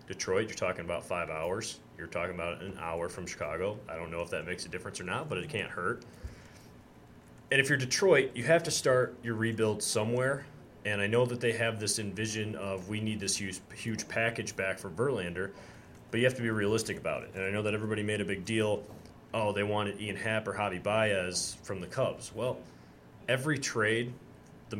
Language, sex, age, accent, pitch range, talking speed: English, male, 30-49, American, 95-115 Hz, 210 wpm